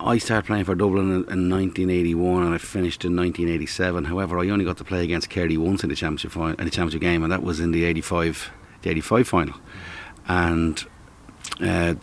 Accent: Irish